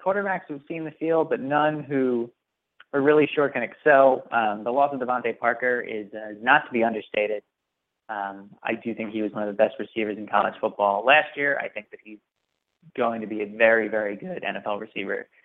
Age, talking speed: 20-39, 215 wpm